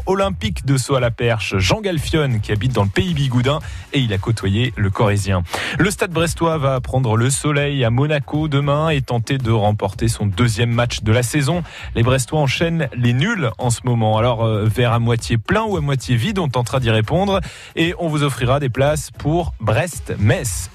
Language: French